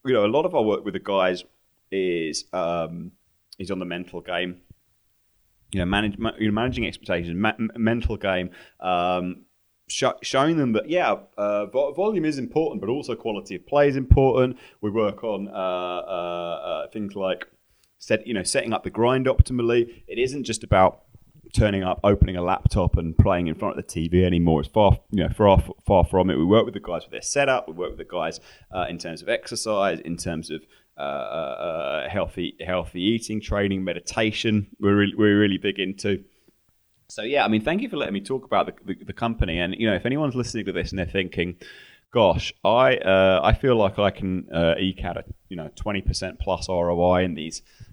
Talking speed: 200 wpm